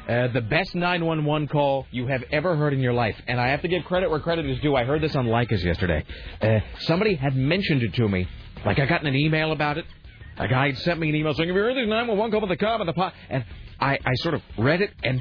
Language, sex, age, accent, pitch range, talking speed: English, male, 40-59, American, 115-155 Hz, 280 wpm